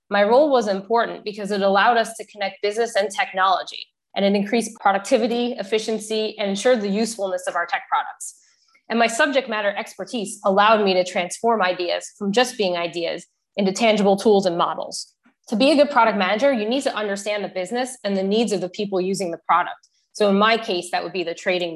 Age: 20-39